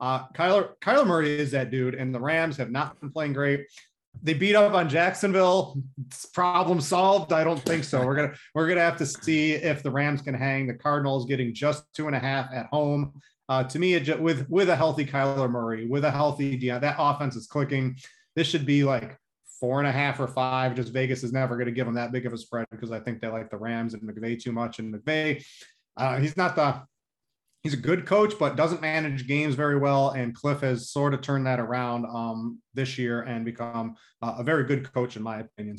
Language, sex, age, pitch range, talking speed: English, male, 30-49, 120-150 Hz, 225 wpm